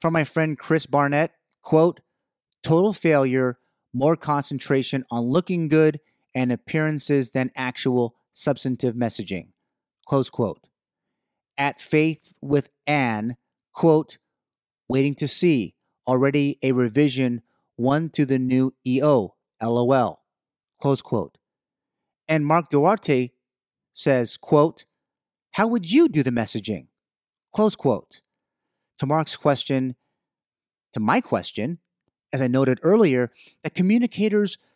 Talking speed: 110 wpm